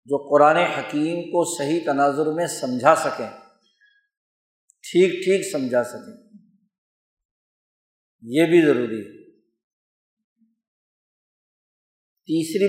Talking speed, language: 85 wpm, Urdu